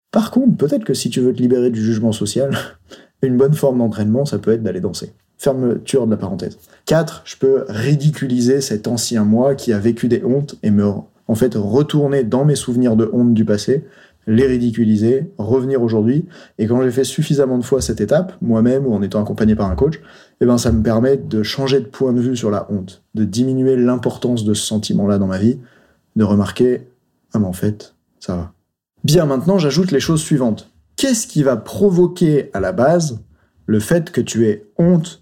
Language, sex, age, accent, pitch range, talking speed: French, male, 30-49, French, 110-140 Hz, 210 wpm